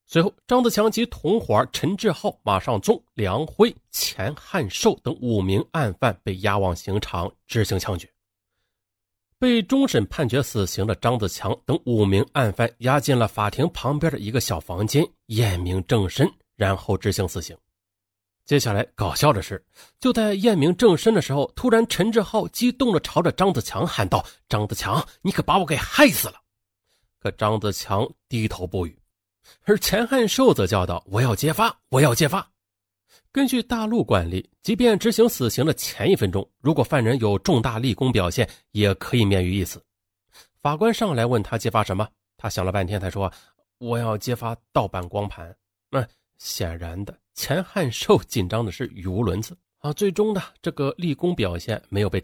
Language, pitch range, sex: Chinese, 95-155 Hz, male